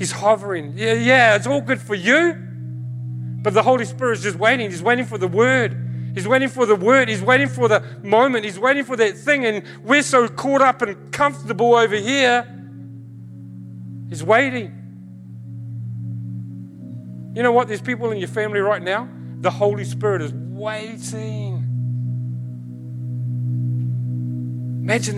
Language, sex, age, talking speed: English, male, 40-59, 150 wpm